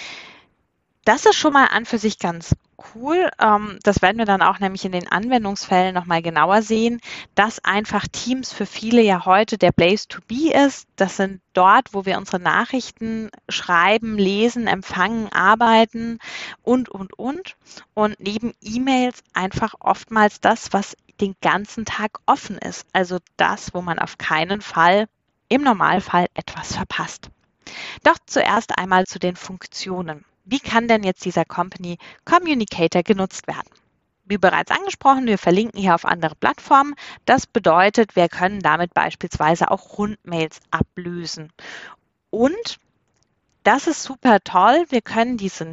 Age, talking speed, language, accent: 20-39, 145 wpm, German, German